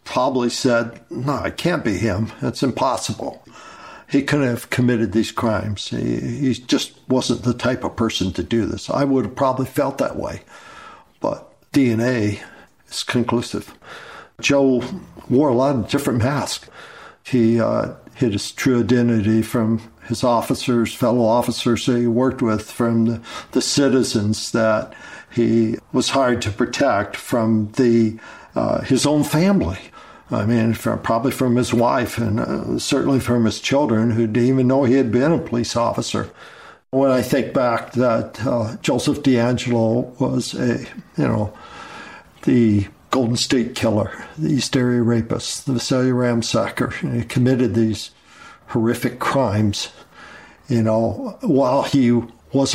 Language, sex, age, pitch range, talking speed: English, male, 60-79, 115-130 Hz, 150 wpm